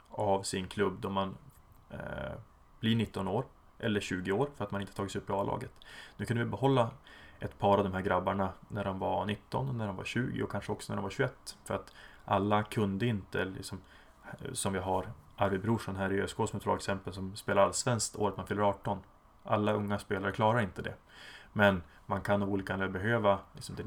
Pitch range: 95-110 Hz